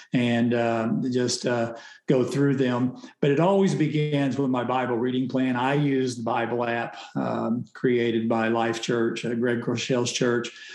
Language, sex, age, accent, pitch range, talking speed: English, male, 50-69, American, 120-140 Hz, 165 wpm